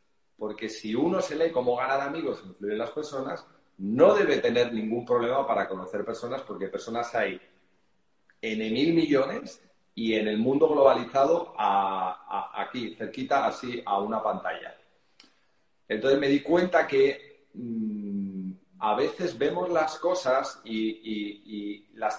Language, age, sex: Spanish, 40-59, male